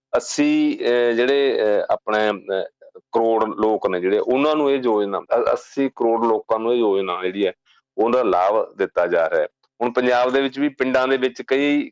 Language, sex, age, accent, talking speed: English, male, 40-59, Indian, 180 wpm